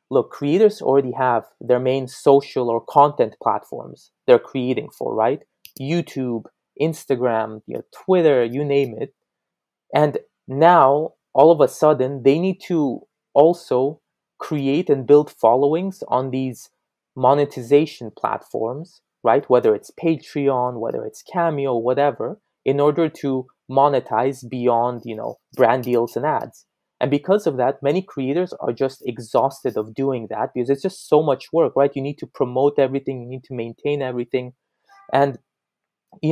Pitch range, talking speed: 125-155 Hz, 150 wpm